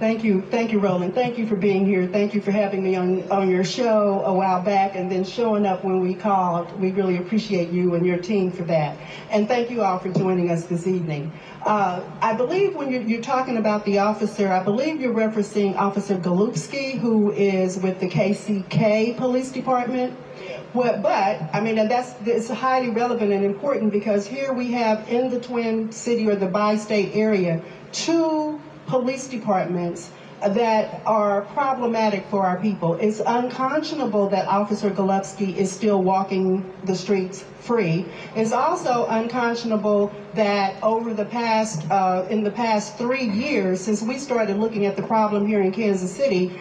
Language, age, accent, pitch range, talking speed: English, 40-59, American, 195-235 Hz, 175 wpm